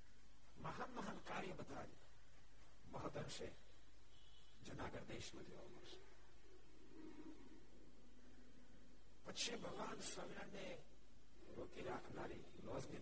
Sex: male